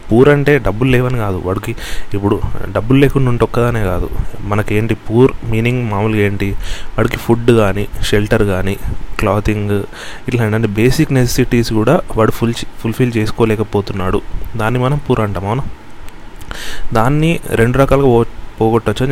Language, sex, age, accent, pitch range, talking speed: Telugu, male, 30-49, native, 100-120 Hz, 130 wpm